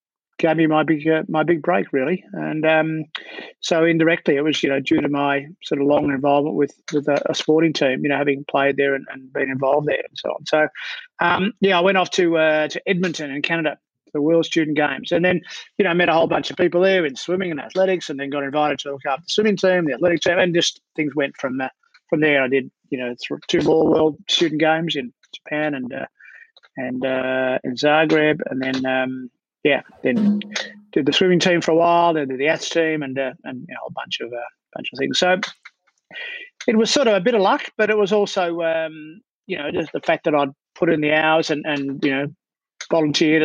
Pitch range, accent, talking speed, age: 145-180 Hz, Australian, 240 wpm, 30-49